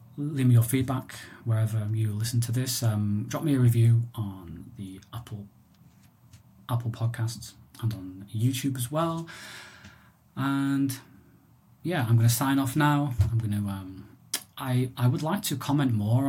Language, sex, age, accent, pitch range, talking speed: English, male, 20-39, British, 110-125 Hz, 160 wpm